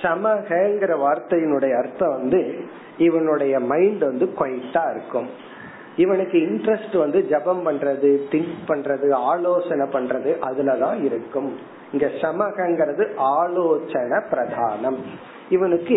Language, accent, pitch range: Tamil, native, 155-210 Hz